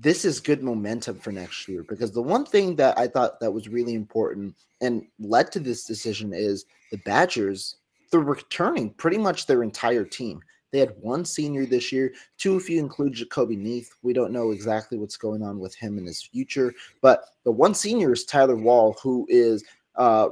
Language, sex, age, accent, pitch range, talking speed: English, male, 30-49, American, 105-130 Hz, 200 wpm